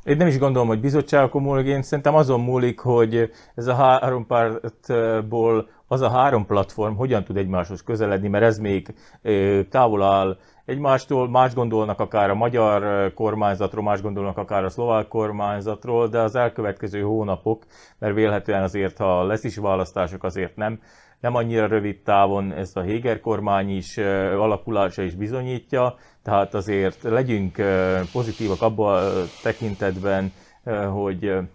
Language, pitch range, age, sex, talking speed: Hungarian, 100-120 Hz, 30-49, male, 145 wpm